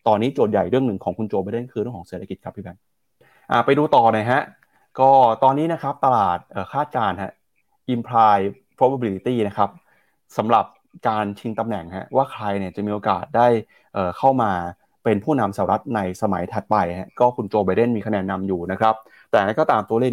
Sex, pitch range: male, 100-125 Hz